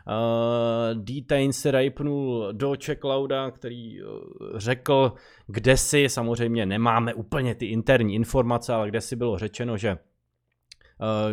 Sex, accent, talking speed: male, native, 125 wpm